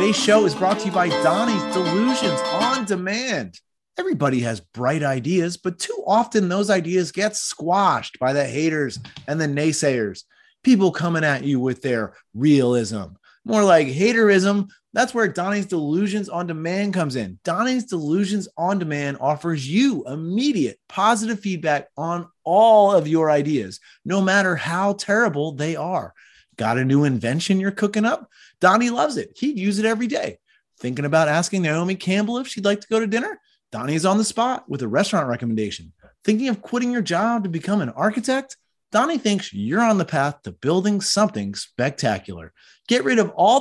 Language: English